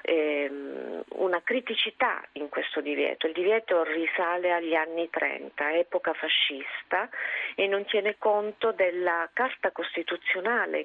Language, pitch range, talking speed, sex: Italian, 160-210 Hz, 110 wpm, female